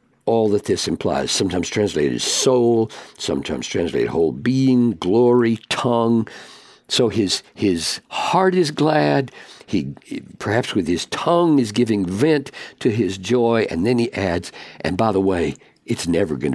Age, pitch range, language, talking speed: 60-79, 105-125 Hz, English, 150 wpm